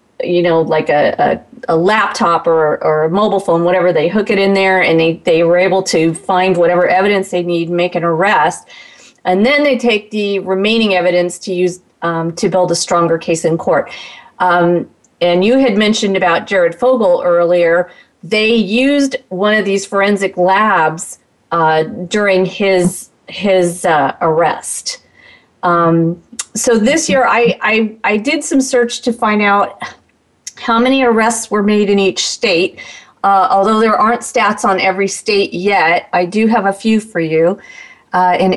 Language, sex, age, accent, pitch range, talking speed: English, female, 40-59, American, 180-225 Hz, 175 wpm